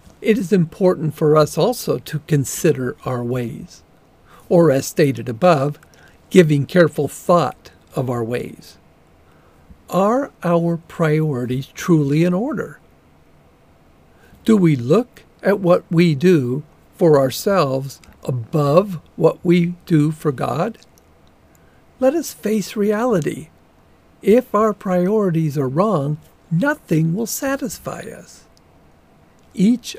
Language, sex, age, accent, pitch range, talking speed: English, male, 50-69, American, 135-180 Hz, 110 wpm